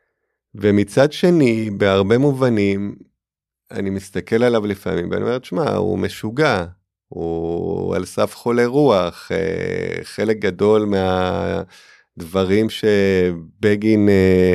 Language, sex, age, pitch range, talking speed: Hebrew, male, 30-49, 95-110 Hz, 90 wpm